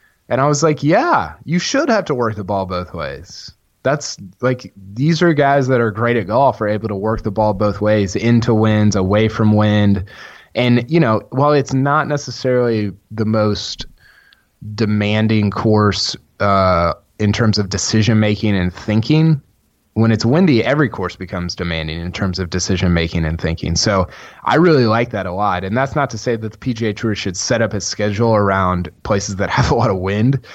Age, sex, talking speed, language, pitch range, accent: 20-39, male, 195 wpm, English, 100-125 Hz, American